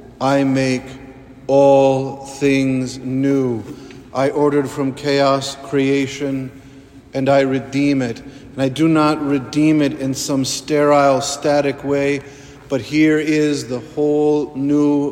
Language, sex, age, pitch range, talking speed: English, male, 50-69, 135-155 Hz, 125 wpm